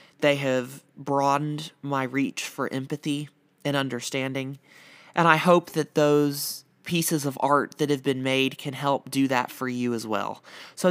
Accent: American